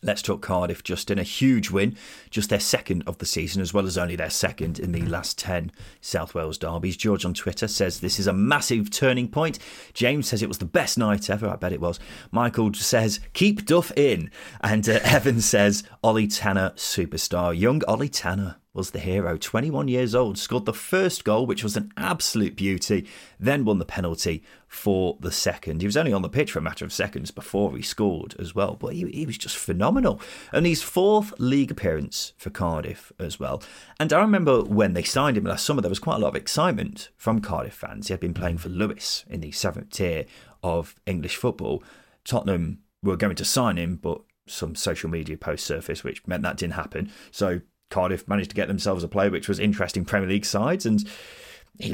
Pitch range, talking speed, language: 90-120 Hz, 210 wpm, English